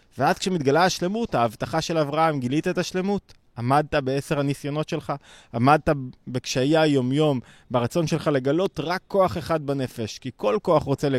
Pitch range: 120-165 Hz